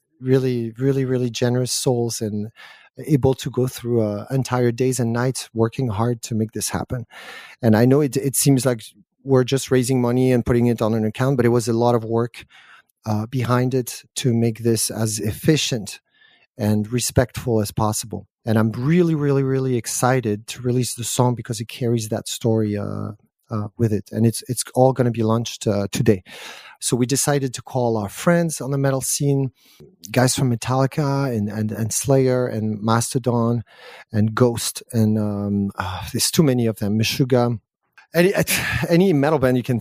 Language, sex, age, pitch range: German, male, 40-59, 110-135 Hz